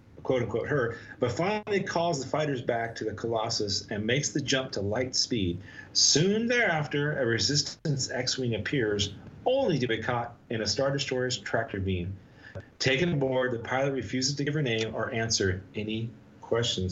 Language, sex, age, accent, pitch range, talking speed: English, male, 40-59, American, 110-130 Hz, 170 wpm